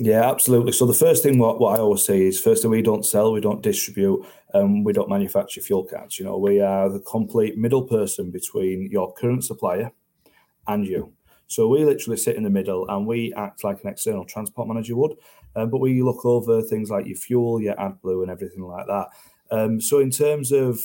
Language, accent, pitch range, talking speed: English, British, 100-130 Hz, 220 wpm